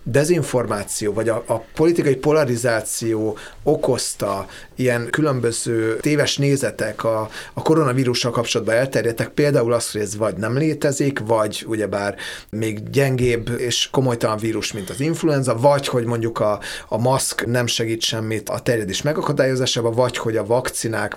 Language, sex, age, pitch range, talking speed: Hungarian, male, 30-49, 115-140 Hz, 140 wpm